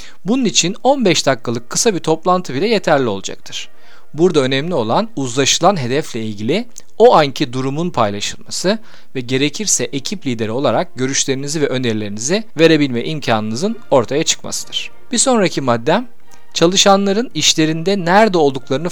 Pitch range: 125-185 Hz